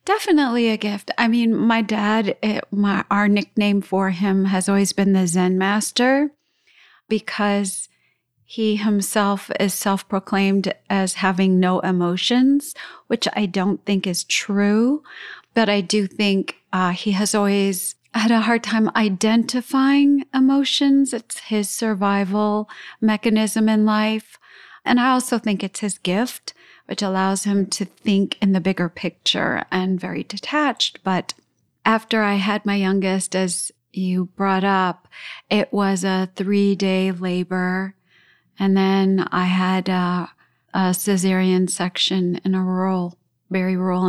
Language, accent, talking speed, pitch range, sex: English, American, 135 wpm, 185-215 Hz, female